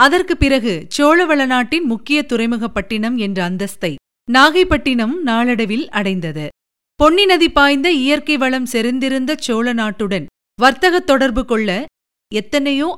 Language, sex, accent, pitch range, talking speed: Tamil, female, native, 210-290 Hz, 90 wpm